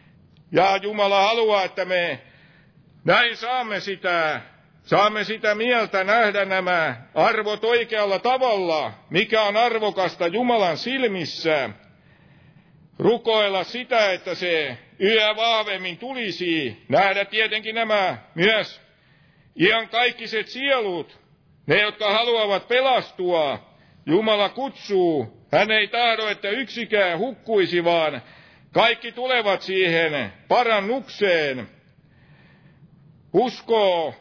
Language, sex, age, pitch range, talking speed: Finnish, male, 60-79, 170-225 Hz, 90 wpm